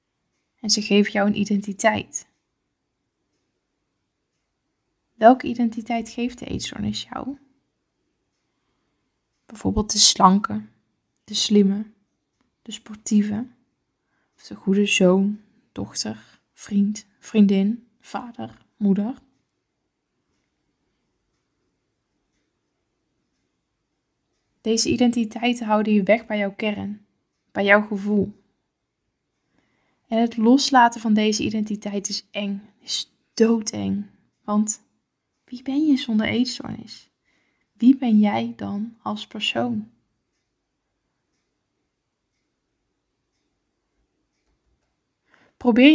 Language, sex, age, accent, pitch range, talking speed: Dutch, female, 20-39, Dutch, 200-235 Hz, 80 wpm